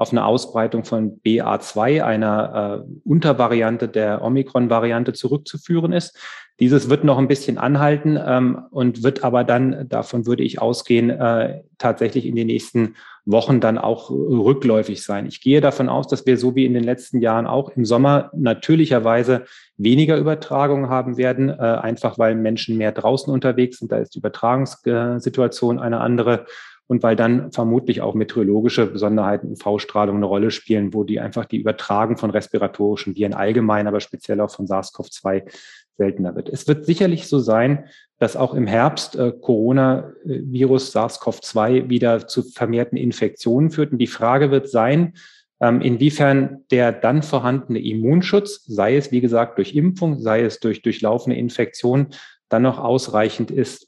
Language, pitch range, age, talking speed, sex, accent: German, 110-135 Hz, 30-49, 155 wpm, male, German